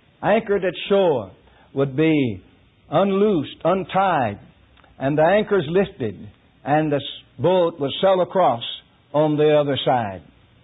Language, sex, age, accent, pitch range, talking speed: English, male, 60-79, American, 130-190 Hz, 120 wpm